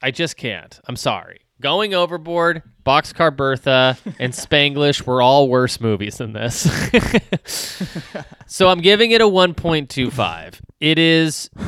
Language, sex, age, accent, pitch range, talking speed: English, male, 20-39, American, 120-185 Hz, 130 wpm